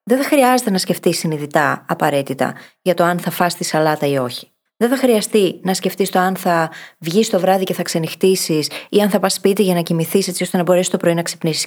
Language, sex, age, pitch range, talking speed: Greek, female, 20-39, 175-250 Hz, 235 wpm